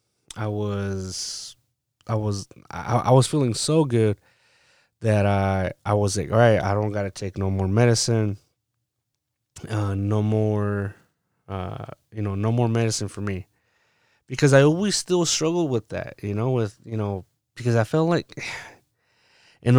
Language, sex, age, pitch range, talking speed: English, male, 20-39, 100-125 Hz, 160 wpm